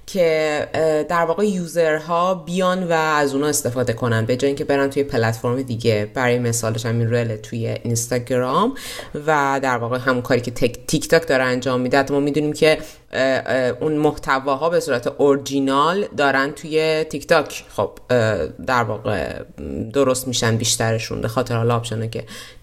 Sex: female